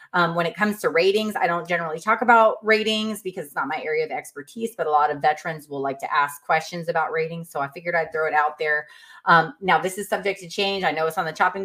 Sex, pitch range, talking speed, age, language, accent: female, 160-220 Hz, 270 wpm, 30-49, English, American